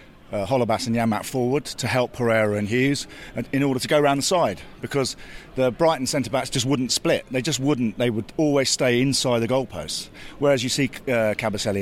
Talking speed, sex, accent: 200 wpm, male, British